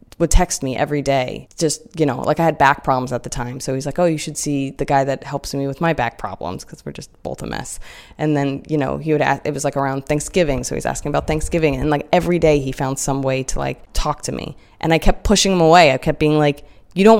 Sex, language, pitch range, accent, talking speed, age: female, English, 135-170 Hz, American, 280 wpm, 20-39